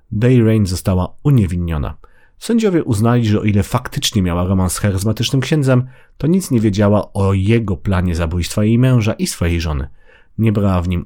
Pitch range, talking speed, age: 90-120 Hz, 175 wpm, 40-59